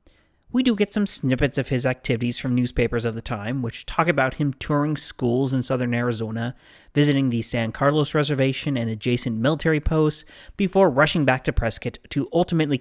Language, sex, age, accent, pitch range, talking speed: English, male, 30-49, American, 120-155 Hz, 180 wpm